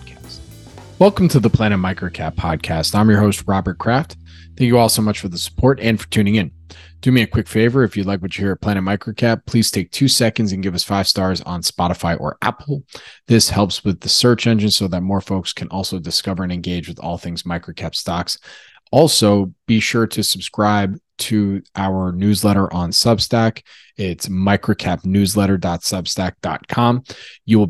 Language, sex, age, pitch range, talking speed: English, male, 20-39, 90-115 Hz, 180 wpm